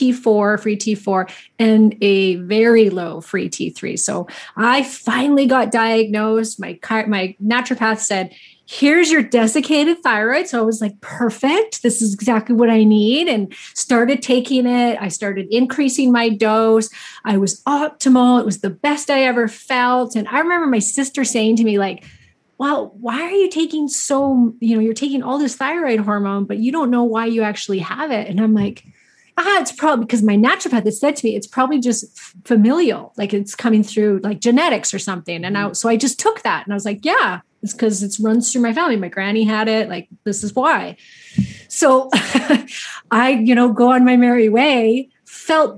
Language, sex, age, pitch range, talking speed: English, female, 30-49, 210-260 Hz, 195 wpm